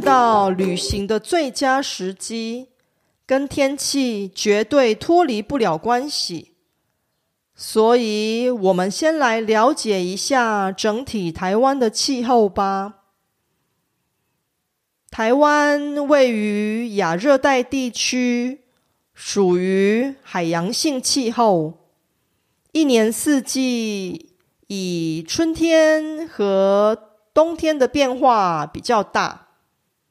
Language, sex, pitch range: Korean, female, 205-265 Hz